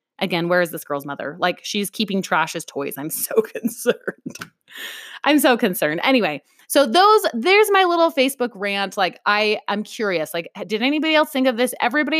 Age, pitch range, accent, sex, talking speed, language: 20-39, 190-300 Hz, American, female, 190 wpm, English